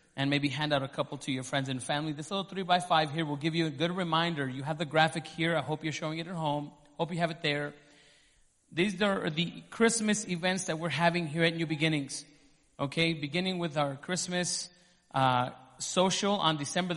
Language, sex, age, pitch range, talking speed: English, male, 30-49, 145-175 Hz, 215 wpm